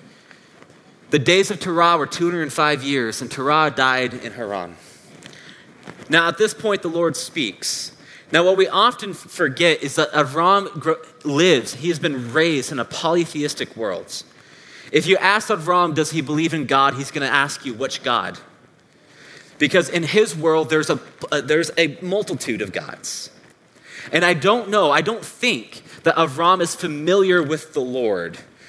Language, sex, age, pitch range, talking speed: English, male, 30-49, 145-180 Hz, 160 wpm